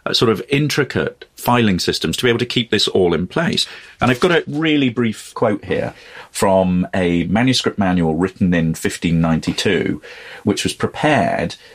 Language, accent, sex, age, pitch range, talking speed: English, British, male, 40-59, 95-130 Hz, 170 wpm